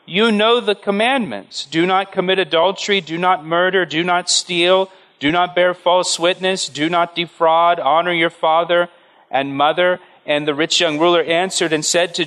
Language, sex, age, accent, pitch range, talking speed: English, male, 40-59, American, 150-190 Hz, 175 wpm